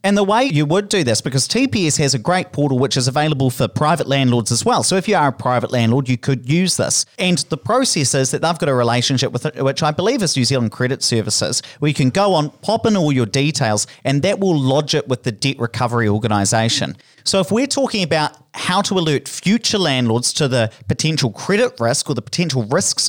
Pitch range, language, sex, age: 125-170 Hz, English, male, 30-49